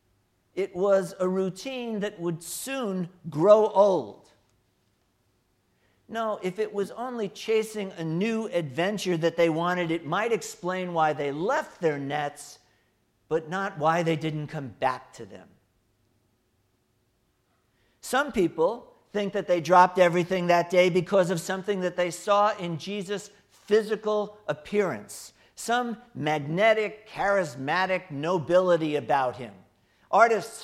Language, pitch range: English, 125-185 Hz